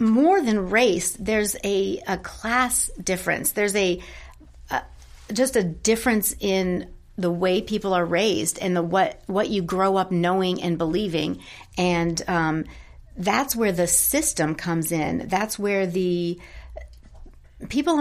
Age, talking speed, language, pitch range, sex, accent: 40-59, 140 wpm, English, 170-205 Hz, female, American